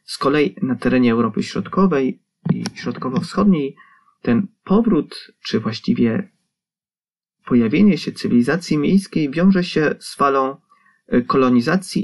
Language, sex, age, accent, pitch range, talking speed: Polish, male, 30-49, native, 135-210 Hz, 105 wpm